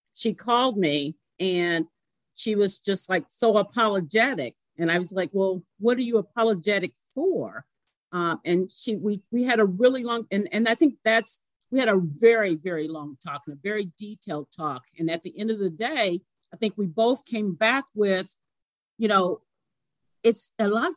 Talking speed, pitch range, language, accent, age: 190 wpm, 170-225 Hz, English, American, 50-69